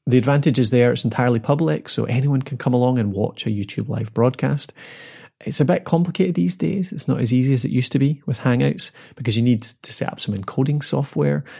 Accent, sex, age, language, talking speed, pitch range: British, male, 30-49, English, 230 wpm, 105-130 Hz